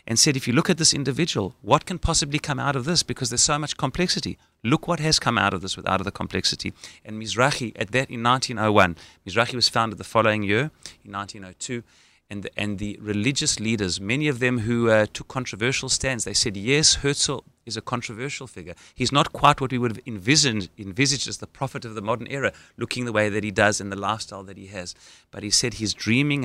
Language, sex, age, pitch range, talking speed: English, male, 30-49, 100-130 Hz, 225 wpm